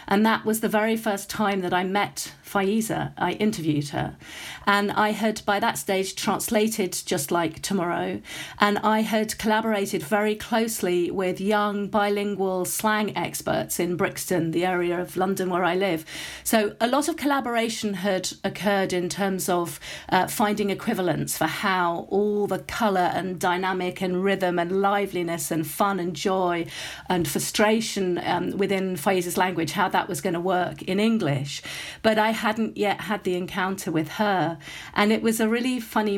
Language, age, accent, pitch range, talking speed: English, 40-59, British, 175-210 Hz, 170 wpm